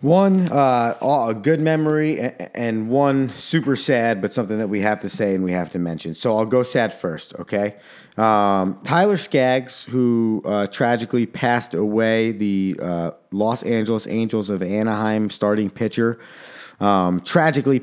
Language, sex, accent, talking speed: English, male, American, 155 wpm